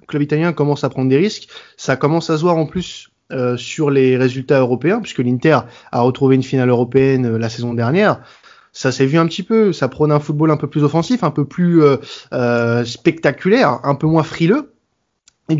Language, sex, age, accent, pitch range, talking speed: French, male, 20-39, French, 125-160 Hz, 215 wpm